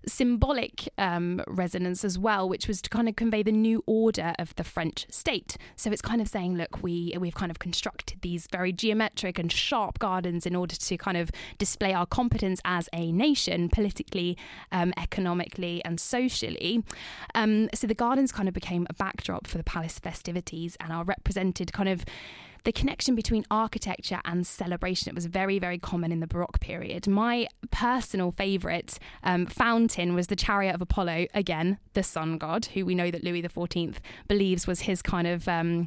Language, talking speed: English, 185 wpm